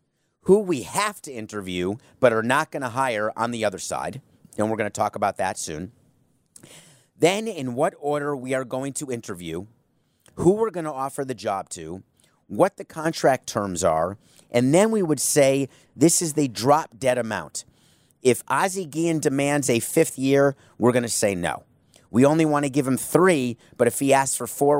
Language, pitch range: English, 115-145 Hz